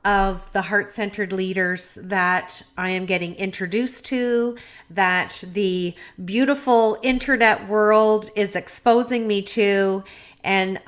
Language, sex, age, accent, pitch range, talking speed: English, female, 40-59, American, 185-225 Hz, 110 wpm